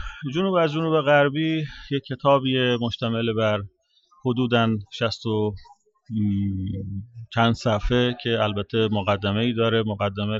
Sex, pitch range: male, 105-120 Hz